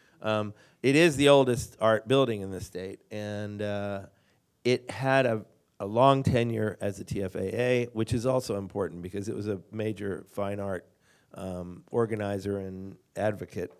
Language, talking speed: English, 155 wpm